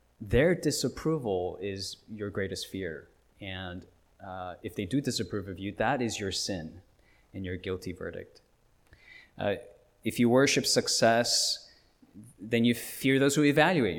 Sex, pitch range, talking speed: male, 95-125 Hz, 140 wpm